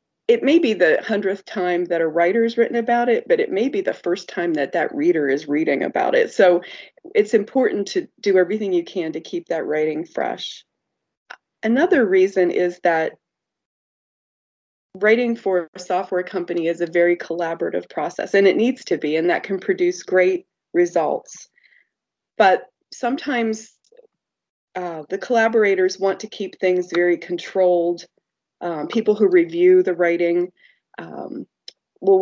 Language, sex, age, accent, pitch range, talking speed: English, female, 30-49, American, 170-230 Hz, 155 wpm